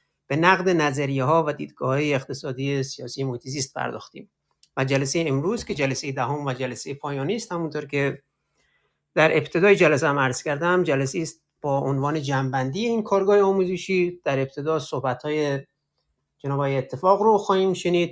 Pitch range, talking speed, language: 135-175 Hz, 140 wpm, Persian